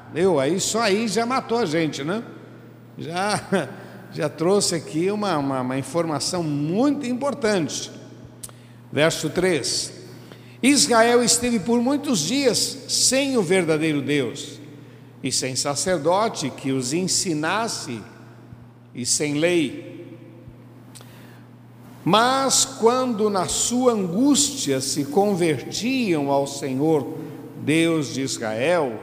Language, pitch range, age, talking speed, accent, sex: Portuguese, 130-220 Hz, 60-79, 100 wpm, Brazilian, male